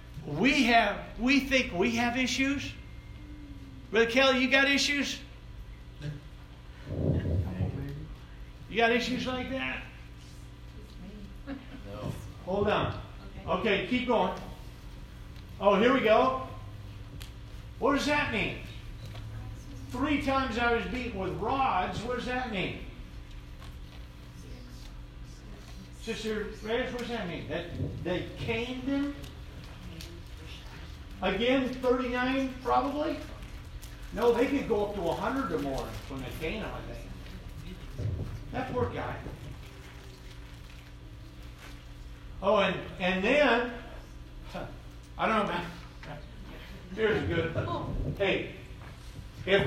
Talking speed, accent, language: 100 wpm, American, English